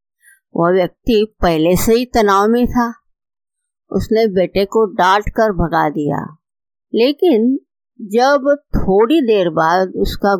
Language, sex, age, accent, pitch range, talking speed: Hindi, female, 50-69, native, 185-245 Hz, 115 wpm